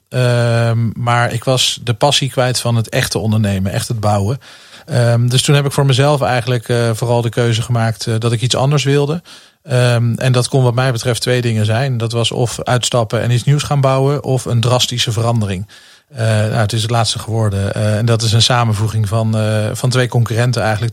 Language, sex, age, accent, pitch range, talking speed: Dutch, male, 40-59, Dutch, 115-125 Hz, 205 wpm